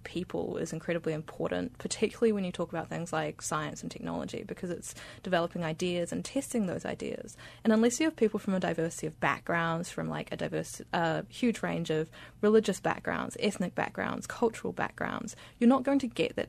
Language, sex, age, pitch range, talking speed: English, female, 20-39, 165-220 Hz, 195 wpm